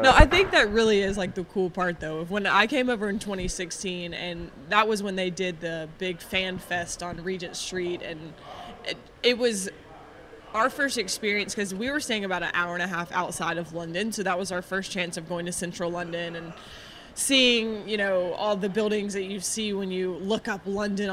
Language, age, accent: English, 20-39, American